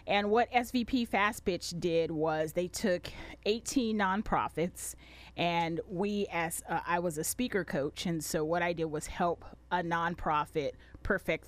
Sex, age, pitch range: female, 30-49, 160-195 Hz